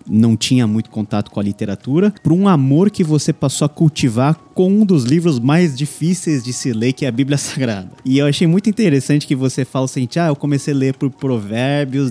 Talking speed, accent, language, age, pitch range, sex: 225 wpm, Brazilian, Portuguese, 20-39, 115-155 Hz, male